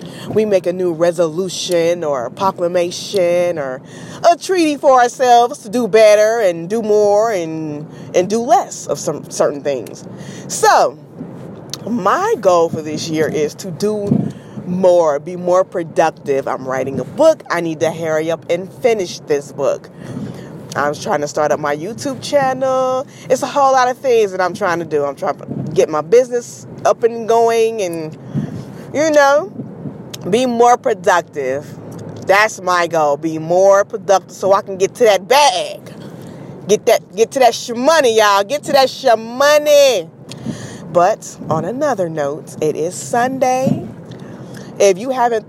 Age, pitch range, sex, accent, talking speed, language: 20-39, 165-245 Hz, female, American, 165 wpm, English